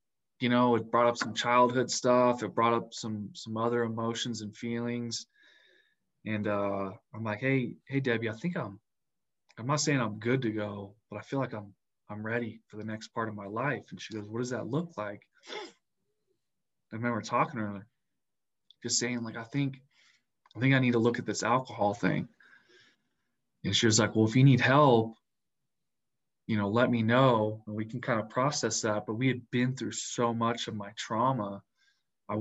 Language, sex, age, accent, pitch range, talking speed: English, male, 20-39, American, 105-120 Hz, 200 wpm